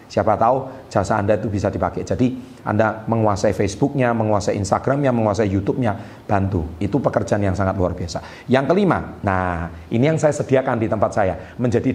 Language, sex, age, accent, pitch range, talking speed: Indonesian, male, 40-59, native, 105-135 Hz, 165 wpm